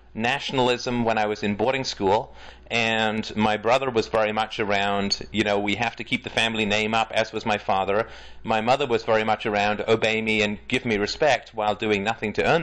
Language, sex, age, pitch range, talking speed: English, male, 30-49, 105-130 Hz, 215 wpm